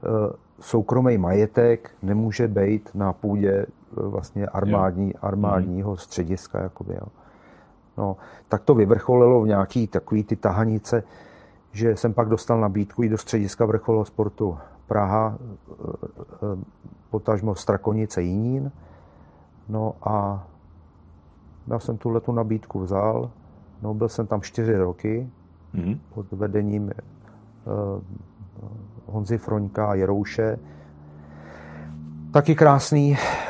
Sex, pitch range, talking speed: male, 100-115 Hz, 95 wpm